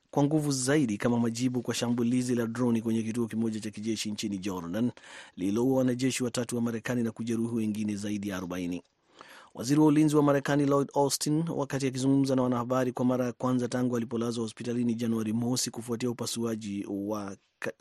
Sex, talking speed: male, 170 wpm